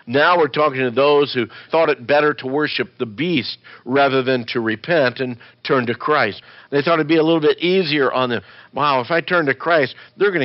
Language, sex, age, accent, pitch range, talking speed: English, male, 50-69, American, 125-165 Hz, 230 wpm